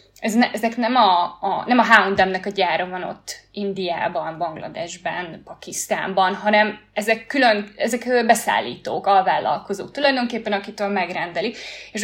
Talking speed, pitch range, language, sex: 125 wpm, 195-235 Hz, Hungarian, female